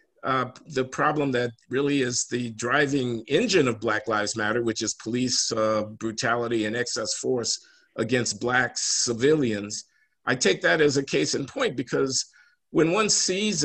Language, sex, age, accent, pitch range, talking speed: English, male, 50-69, American, 115-150 Hz, 160 wpm